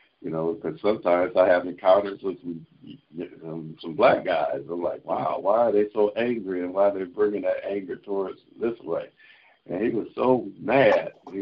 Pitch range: 90-135 Hz